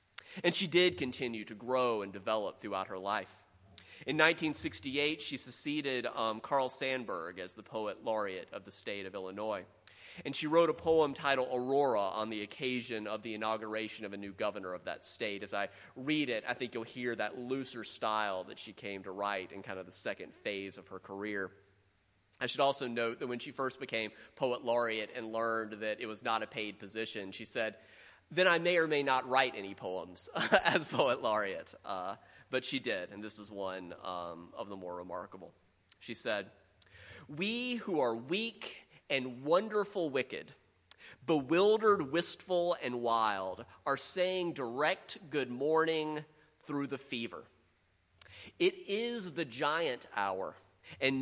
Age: 30-49